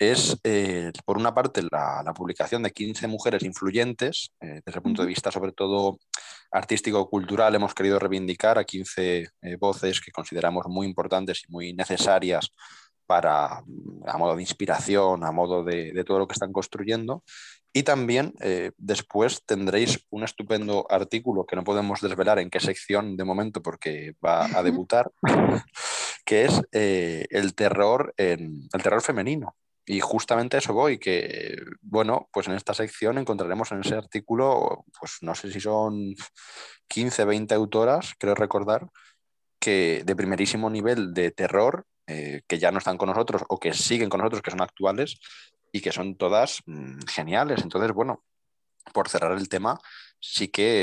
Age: 20-39